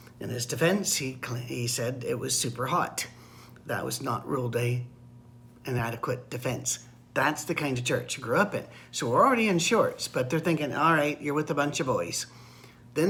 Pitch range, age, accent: 120-160 Hz, 50-69, American